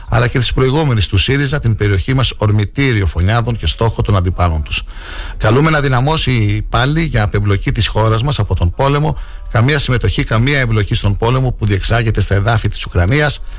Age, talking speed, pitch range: 60-79, 175 wpm, 95-125 Hz